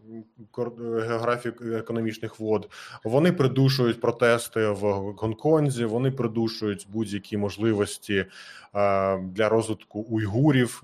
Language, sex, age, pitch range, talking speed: Ukrainian, male, 20-39, 105-120 Hz, 80 wpm